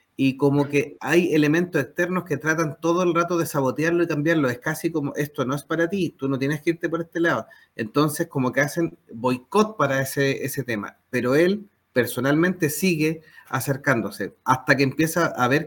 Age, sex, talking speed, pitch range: 30-49, male, 190 wpm, 130-160 Hz